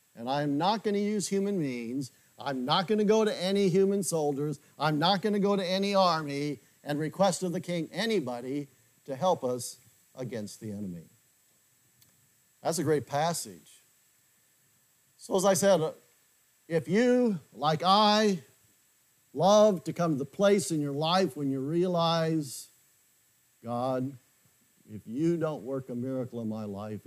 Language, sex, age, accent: English, male, 50-69, American